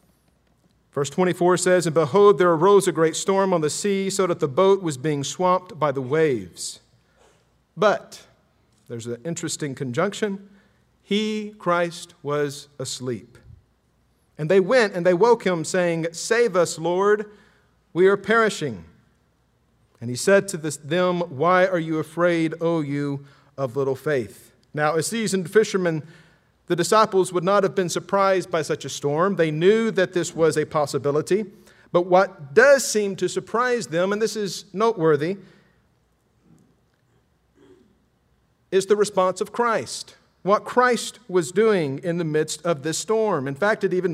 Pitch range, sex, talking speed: 160-200 Hz, male, 150 wpm